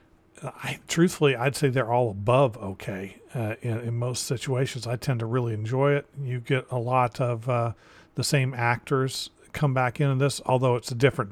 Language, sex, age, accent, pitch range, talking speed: English, male, 40-59, American, 110-135 Hz, 190 wpm